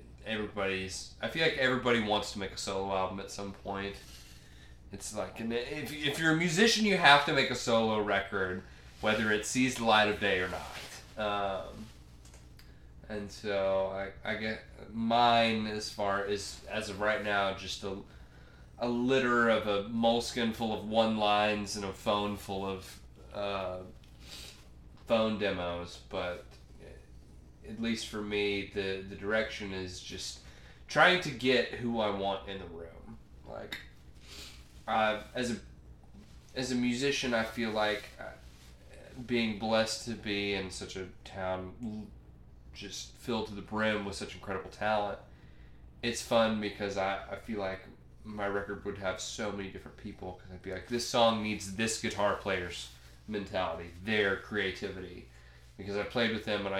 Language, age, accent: English, 20-39, American